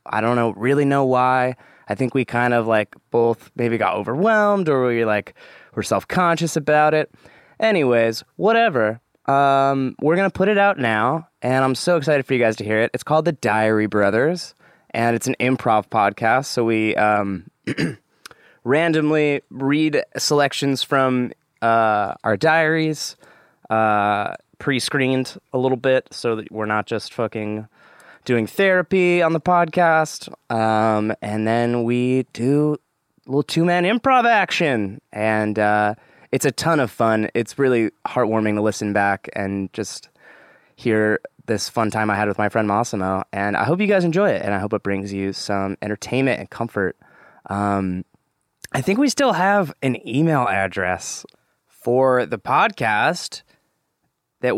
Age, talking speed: 20-39, 160 wpm